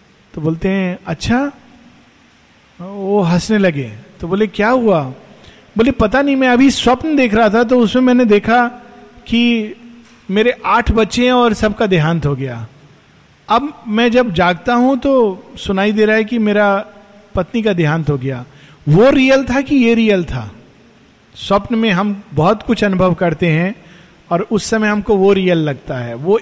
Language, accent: Hindi, native